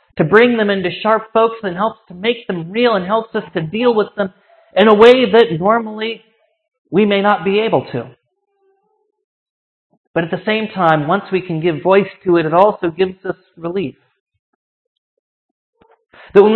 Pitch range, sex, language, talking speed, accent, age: 185-225 Hz, male, English, 180 wpm, American, 40-59